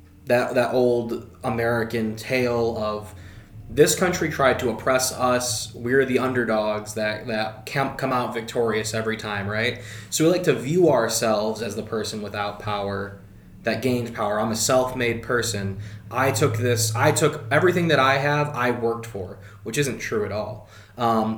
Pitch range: 105-125 Hz